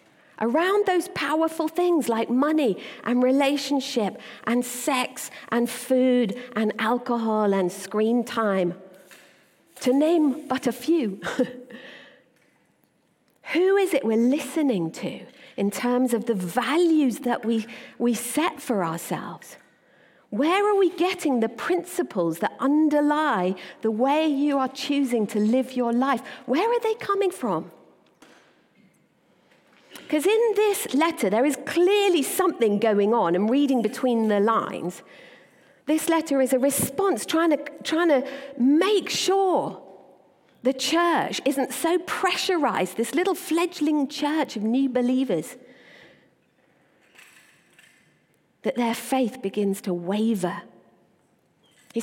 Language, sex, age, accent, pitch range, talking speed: English, female, 50-69, British, 230-315 Hz, 120 wpm